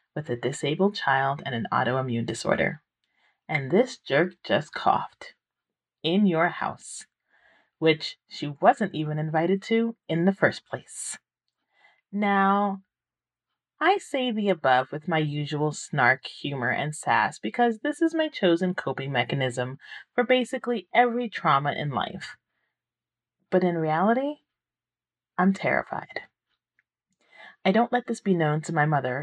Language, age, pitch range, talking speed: English, 30-49, 140-195 Hz, 135 wpm